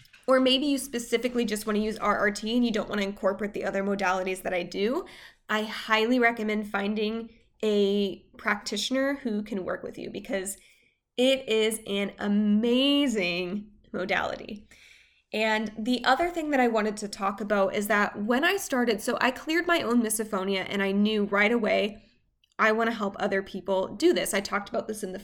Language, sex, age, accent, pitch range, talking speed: English, female, 20-39, American, 200-245 Hz, 180 wpm